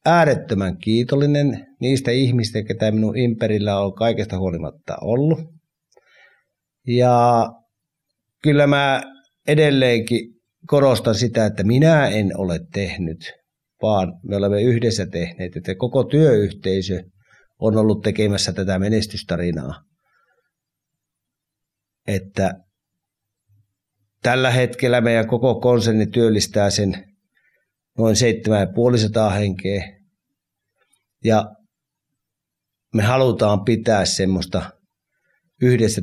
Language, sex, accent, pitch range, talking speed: Finnish, male, native, 100-125 Hz, 85 wpm